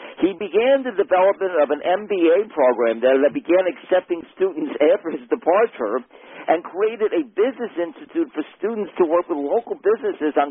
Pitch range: 140-225 Hz